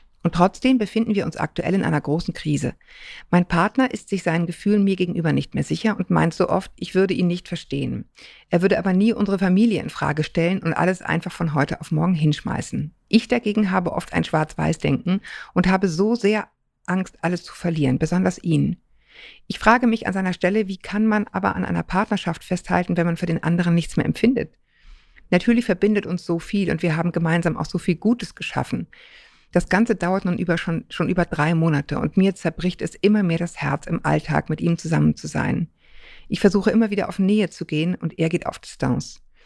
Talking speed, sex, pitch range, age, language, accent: 210 wpm, female, 165-205 Hz, 50-69, German, German